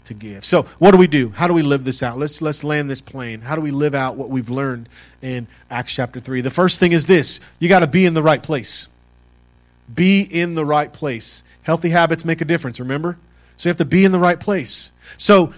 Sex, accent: male, American